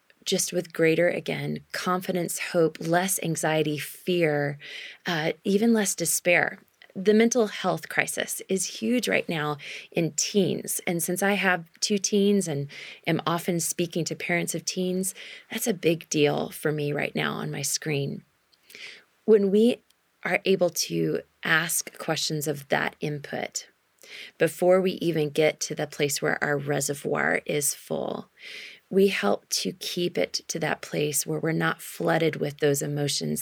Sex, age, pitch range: female, 20-39, 150-190 Hz